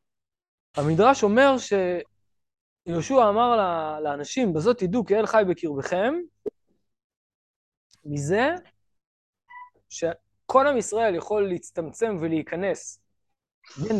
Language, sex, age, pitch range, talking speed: Hebrew, male, 20-39, 140-225 Hz, 85 wpm